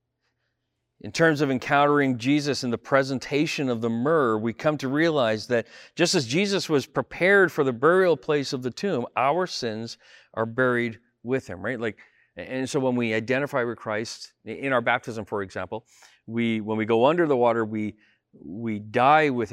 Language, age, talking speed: English, 40-59, 180 wpm